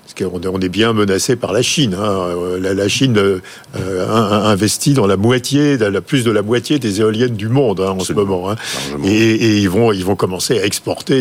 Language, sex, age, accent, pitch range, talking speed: French, male, 50-69, French, 100-130 Hz, 160 wpm